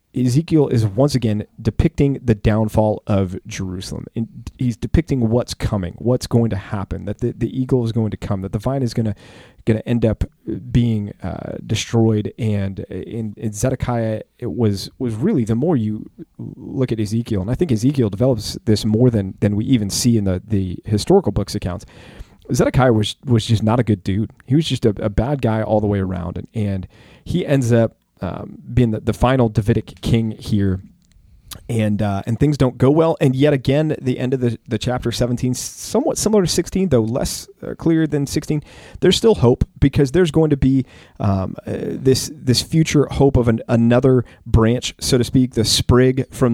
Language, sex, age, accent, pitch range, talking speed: English, male, 30-49, American, 105-130 Hz, 195 wpm